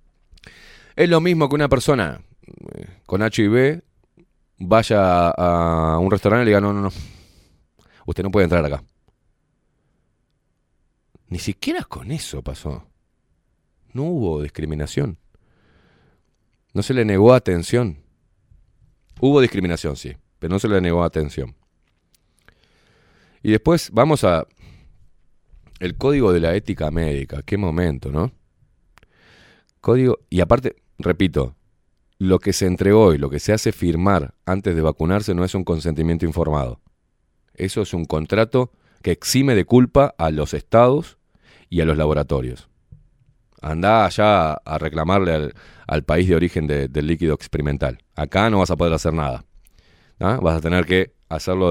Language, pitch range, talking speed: Spanish, 80-105 Hz, 140 wpm